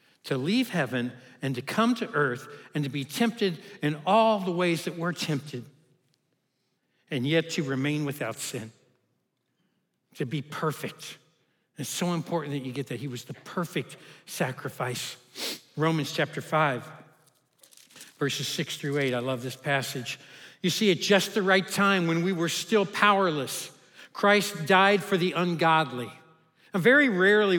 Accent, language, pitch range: American, English, 145-190 Hz